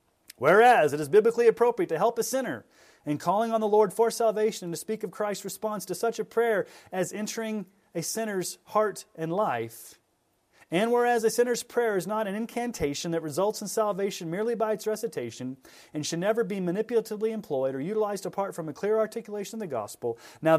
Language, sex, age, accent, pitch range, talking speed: English, male, 30-49, American, 155-220 Hz, 195 wpm